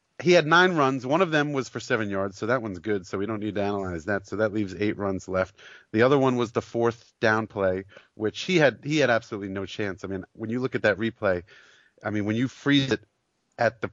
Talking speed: 260 wpm